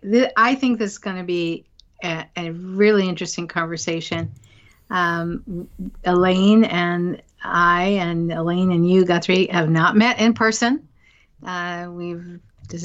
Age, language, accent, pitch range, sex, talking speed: 50-69, English, American, 165-195 Hz, female, 135 wpm